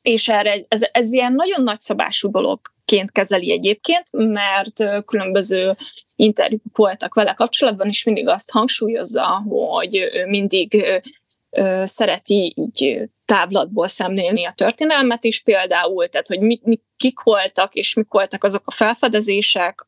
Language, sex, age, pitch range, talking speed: Hungarian, female, 20-39, 200-240 Hz, 125 wpm